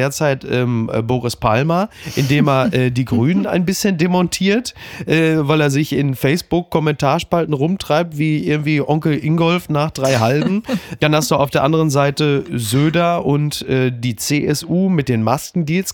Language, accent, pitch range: German, German, 130-160 Hz